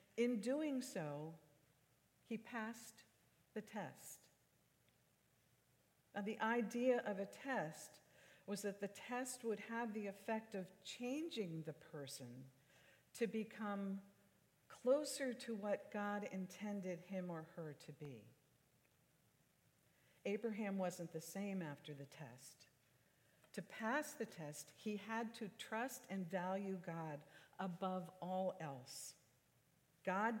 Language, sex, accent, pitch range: English, female, American, 150-220 Hz